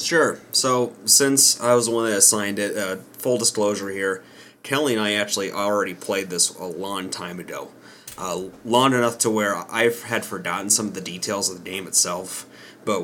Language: English